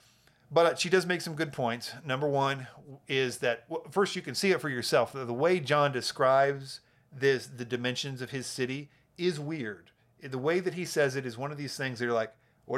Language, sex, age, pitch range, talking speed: English, male, 40-59, 120-145 Hz, 220 wpm